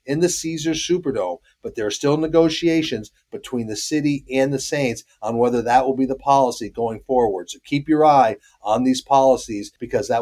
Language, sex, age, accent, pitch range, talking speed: English, male, 40-59, American, 130-165 Hz, 195 wpm